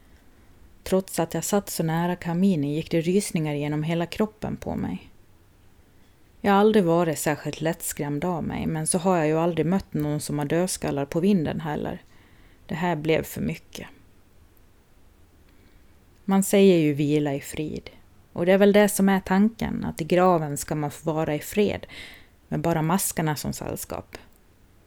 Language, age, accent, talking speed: Swedish, 30-49, native, 170 wpm